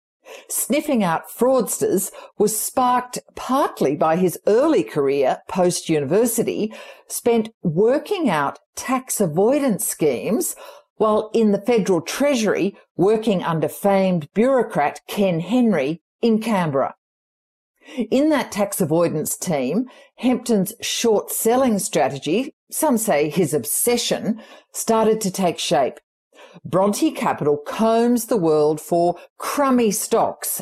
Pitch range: 180-245 Hz